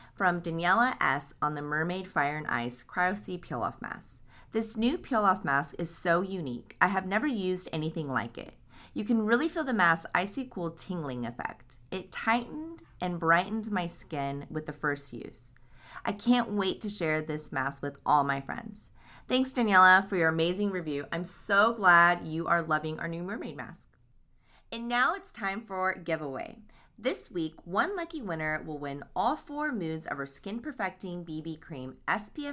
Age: 30-49